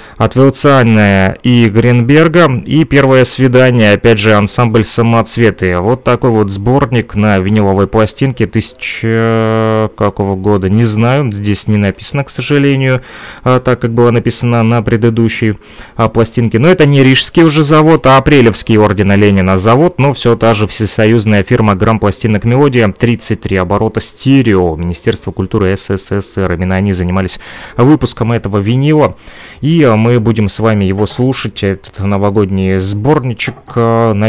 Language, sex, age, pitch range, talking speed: Russian, male, 30-49, 100-125 Hz, 140 wpm